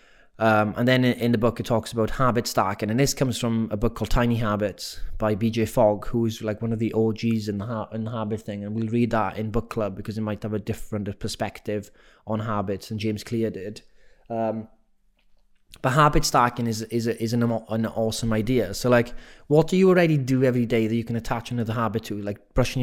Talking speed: 225 wpm